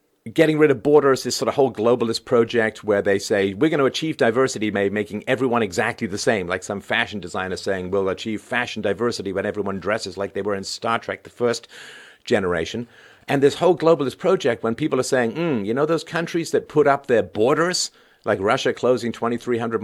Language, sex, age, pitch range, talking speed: English, male, 50-69, 105-135 Hz, 205 wpm